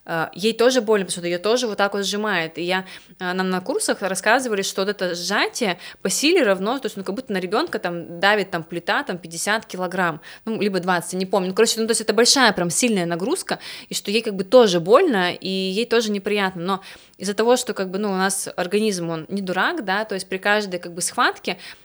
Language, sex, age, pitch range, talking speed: Russian, female, 20-39, 180-215 Hz, 235 wpm